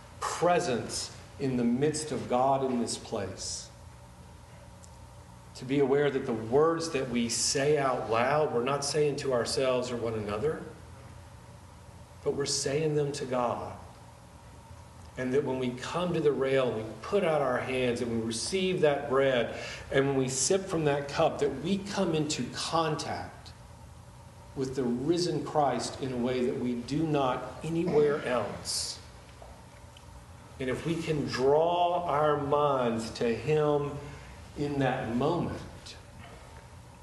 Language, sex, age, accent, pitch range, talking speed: English, male, 40-59, American, 115-145 Hz, 145 wpm